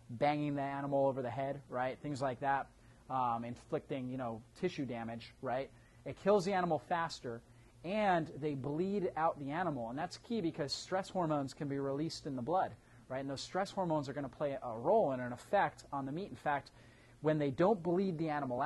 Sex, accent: male, American